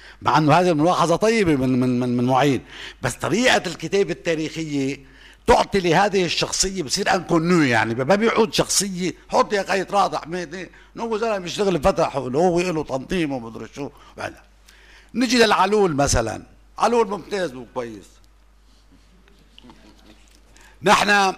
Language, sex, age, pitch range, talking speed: English, male, 60-79, 120-180 Hz, 115 wpm